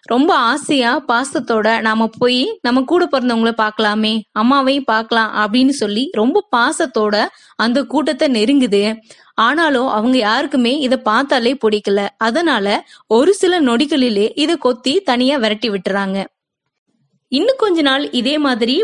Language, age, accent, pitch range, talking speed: Tamil, 20-39, native, 220-290 Hz, 120 wpm